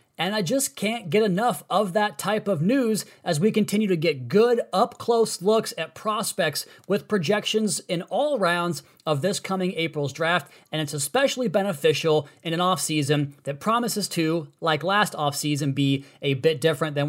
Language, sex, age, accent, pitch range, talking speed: English, male, 30-49, American, 150-195 Hz, 170 wpm